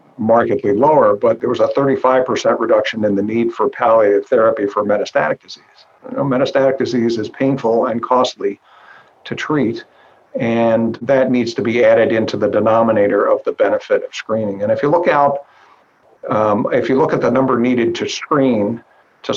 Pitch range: 115-145 Hz